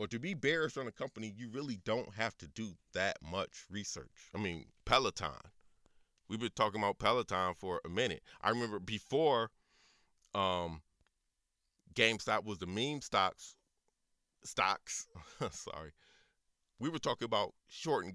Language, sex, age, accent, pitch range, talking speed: English, male, 30-49, American, 85-120 Hz, 140 wpm